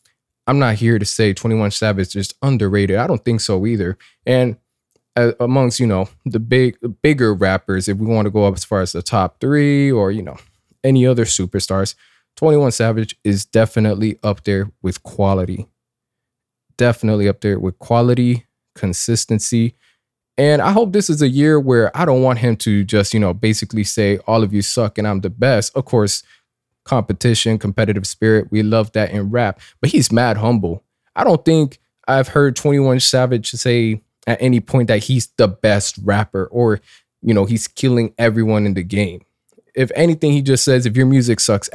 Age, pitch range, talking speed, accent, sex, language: 20-39, 105-130 Hz, 185 wpm, American, male, English